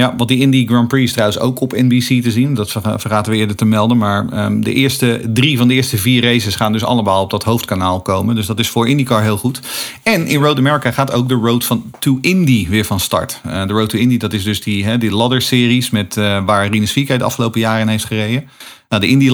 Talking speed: 260 wpm